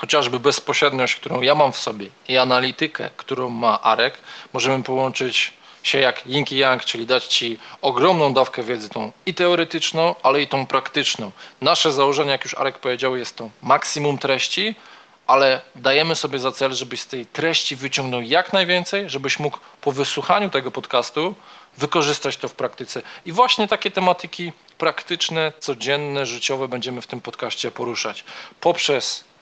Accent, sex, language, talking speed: native, male, Polish, 155 wpm